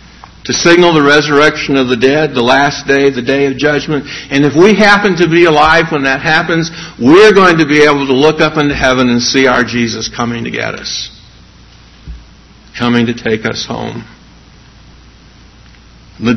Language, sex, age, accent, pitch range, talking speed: English, male, 60-79, American, 120-150 Hz, 175 wpm